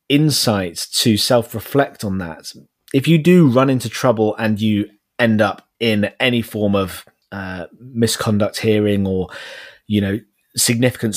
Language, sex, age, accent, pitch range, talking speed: English, male, 30-49, British, 105-125 Hz, 145 wpm